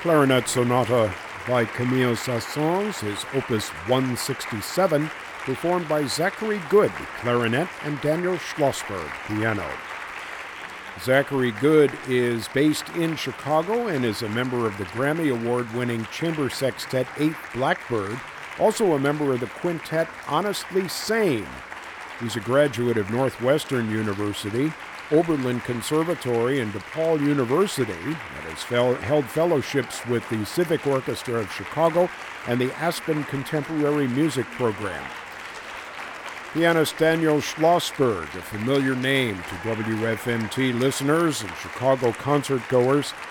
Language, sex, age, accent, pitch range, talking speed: English, male, 50-69, American, 120-160 Hz, 115 wpm